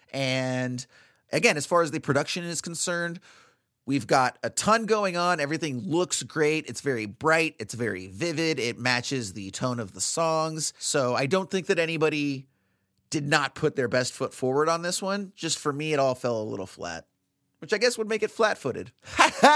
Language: English